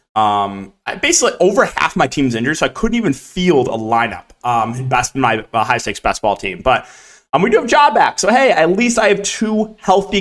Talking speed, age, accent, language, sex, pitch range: 230 wpm, 20-39, American, English, male, 125-185 Hz